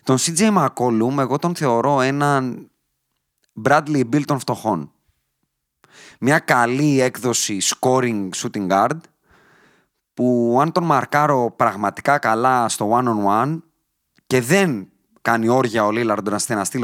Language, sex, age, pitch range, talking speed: Greek, male, 30-49, 115-170 Hz, 125 wpm